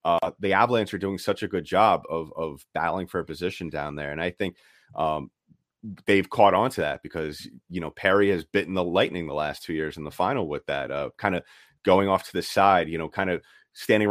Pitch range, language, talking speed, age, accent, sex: 80-100 Hz, English, 240 wpm, 30-49, American, male